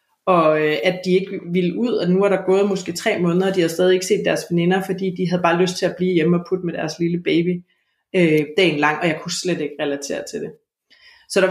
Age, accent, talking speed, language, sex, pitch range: 30-49, native, 265 wpm, Danish, female, 170-205 Hz